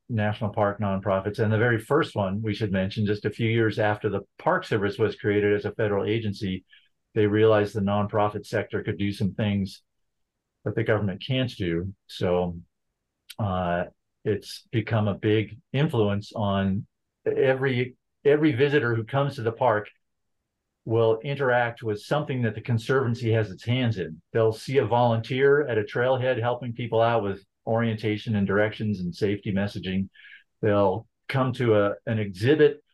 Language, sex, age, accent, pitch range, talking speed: English, male, 50-69, American, 105-120 Hz, 160 wpm